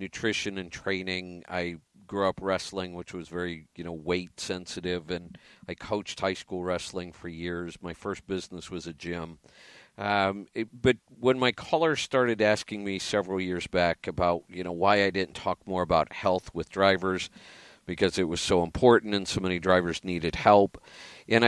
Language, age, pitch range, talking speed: English, 50-69, 90-115 Hz, 175 wpm